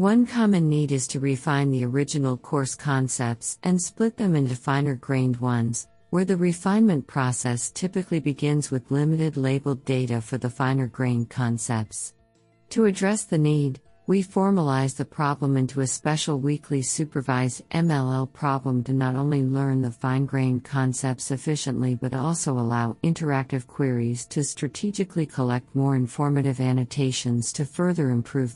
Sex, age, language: female, 50-69, English